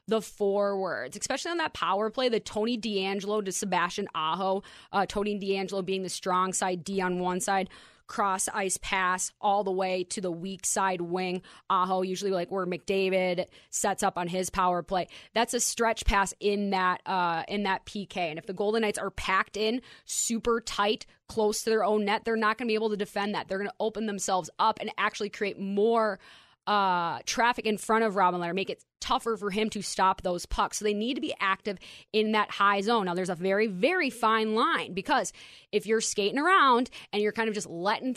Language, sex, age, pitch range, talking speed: English, female, 20-39, 190-220 Hz, 210 wpm